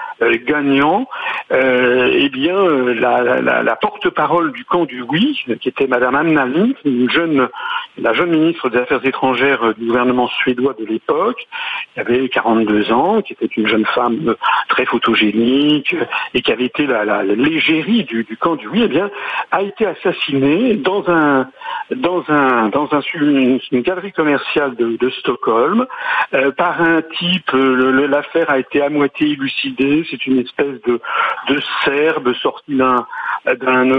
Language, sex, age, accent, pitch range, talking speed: French, male, 60-79, French, 130-180 Hz, 160 wpm